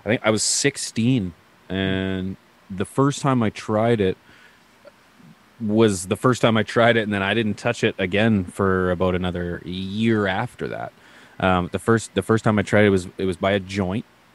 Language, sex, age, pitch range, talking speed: English, male, 20-39, 90-115 Hz, 195 wpm